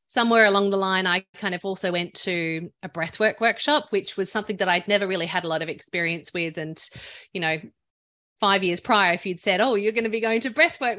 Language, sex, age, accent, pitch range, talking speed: English, female, 30-49, Australian, 180-230 Hz, 235 wpm